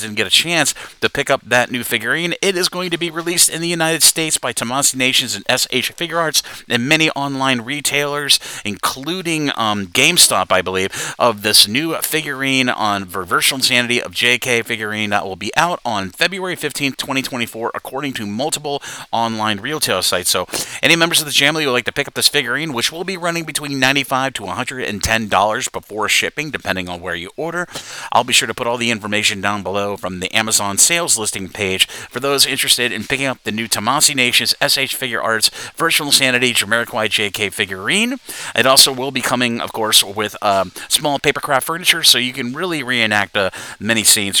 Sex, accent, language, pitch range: male, American, English, 110-155 Hz